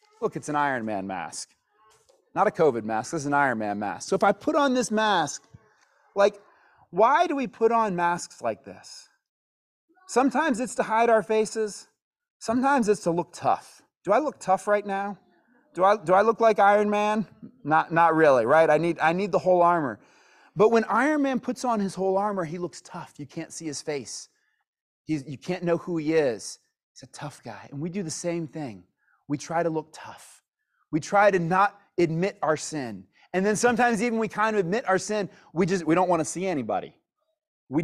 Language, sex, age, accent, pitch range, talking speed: English, male, 30-49, American, 155-215 Hz, 210 wpm